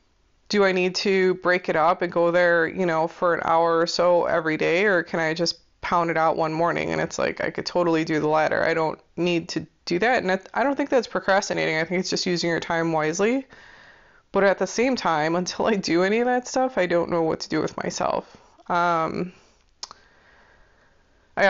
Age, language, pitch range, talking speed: 20-39, English, 165-195 Hz, 220 wpm